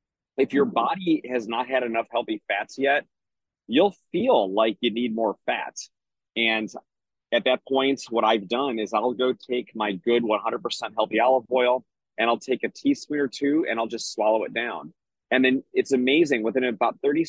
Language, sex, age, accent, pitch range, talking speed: English, male, 30-49, American, 110-135 Hz, 185 wpm